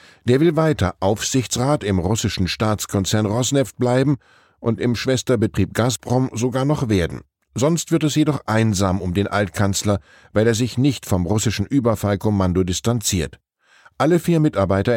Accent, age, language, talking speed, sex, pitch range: German, 10-29, German, 140 wpm, male, 100-130 Hz